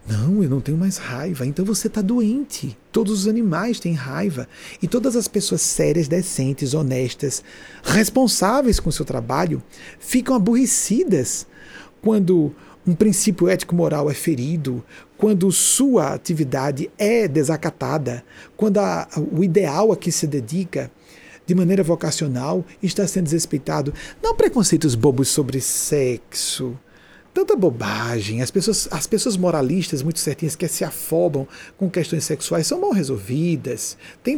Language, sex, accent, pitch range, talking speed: Portuguese, male, Brazilian, 145-205 Hz, 135 wpm